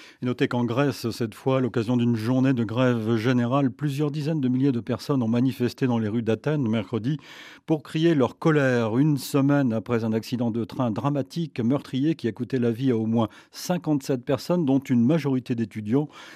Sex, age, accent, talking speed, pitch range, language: male, 40-59, French, 190 wpm, 120-155 Hz, French